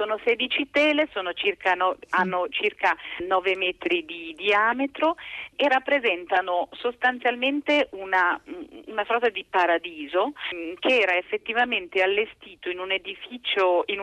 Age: 40-59